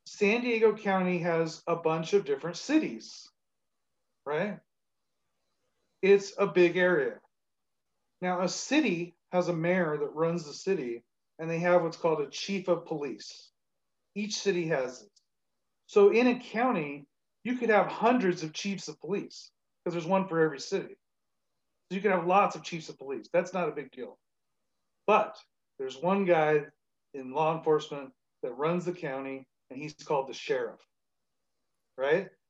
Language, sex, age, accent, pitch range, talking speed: English, male, 40-59, American, 155-200 Hz, 160 wpm